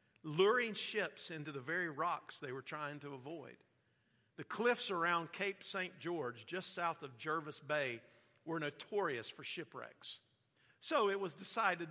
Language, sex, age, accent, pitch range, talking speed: English, male, 50-69, American, 145-195 Hz, 150 wpm